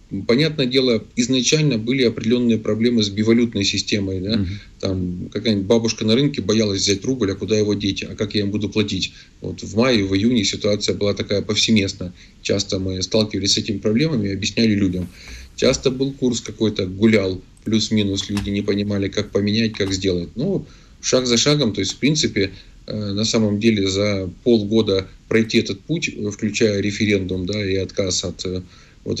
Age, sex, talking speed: 20-39, male, 170 wpm